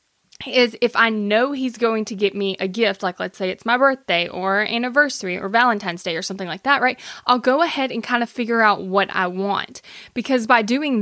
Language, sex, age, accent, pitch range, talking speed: English, female, 20-39, American, 200-255 Hz, 225 wpm